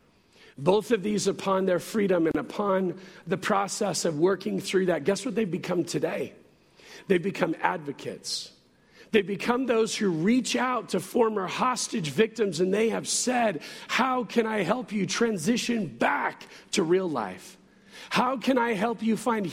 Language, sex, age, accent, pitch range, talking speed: English, male, 50-69, American, 195-235 Hz, 160 wpm